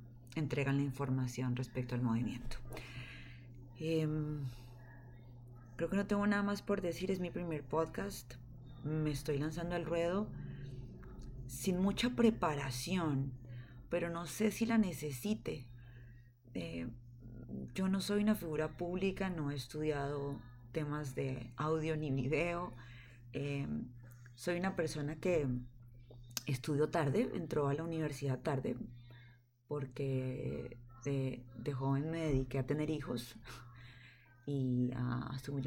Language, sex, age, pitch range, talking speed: Spanish, female, 20-39, 125-155 Hz, 120 wpm